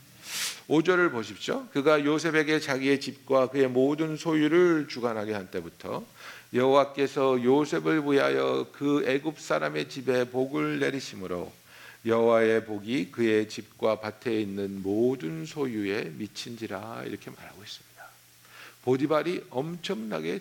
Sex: male